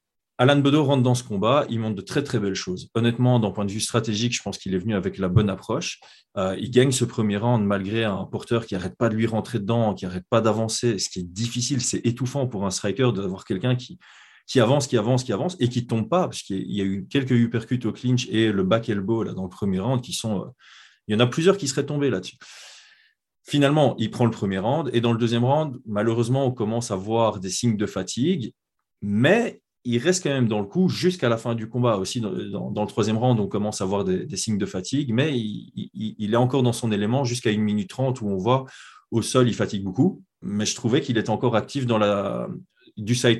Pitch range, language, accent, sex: 105-125 Hz, French, French, male